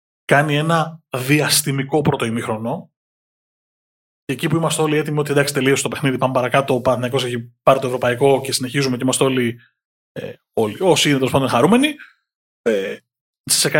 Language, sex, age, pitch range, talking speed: Greek, male, 20-39, 125-150 Hz, 165 wpm